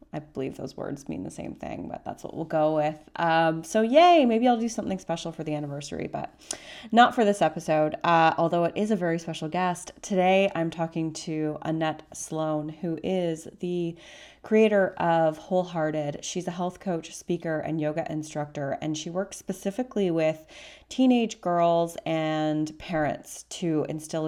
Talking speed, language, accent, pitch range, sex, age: 170 wpm, English, American, 150-175 Hz, female, 30-49